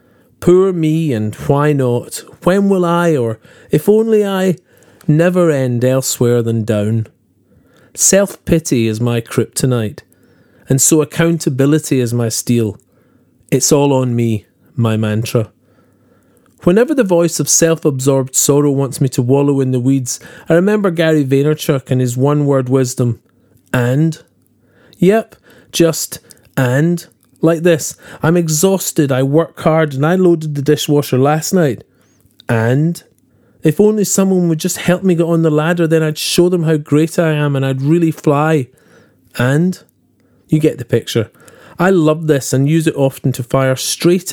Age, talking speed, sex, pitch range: 40-59, 150 wpm, male, 125-165 Hz